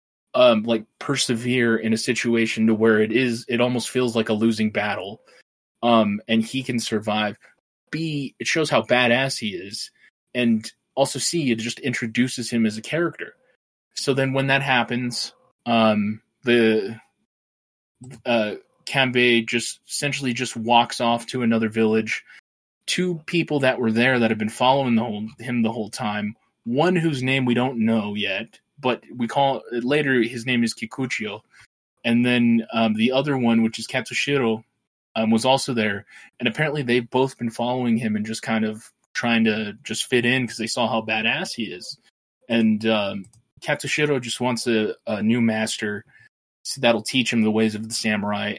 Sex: male